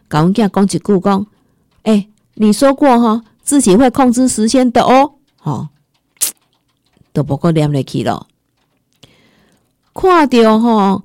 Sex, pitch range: female, 165-245 Hz